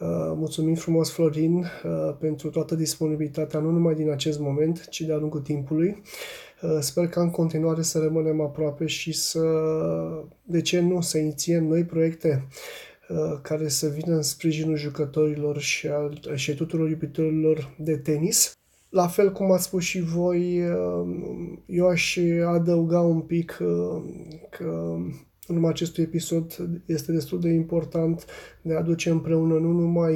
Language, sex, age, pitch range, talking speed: Romanian, male, 20-39, 155-170 Hz, 150 wpm